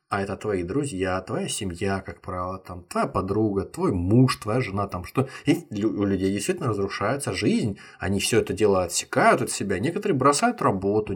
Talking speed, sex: 175 wpm, male